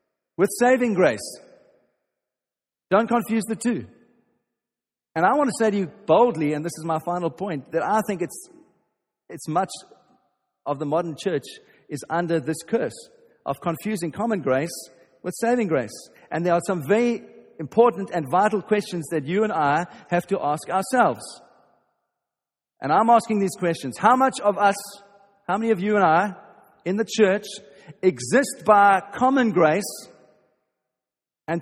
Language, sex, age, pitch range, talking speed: English, male, 40-59, 145-205 Hz, 155 wpm